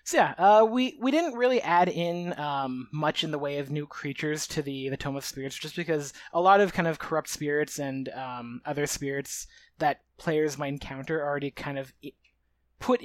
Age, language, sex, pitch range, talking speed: 20-39, English, male, 135-175 Hz, 200 wpm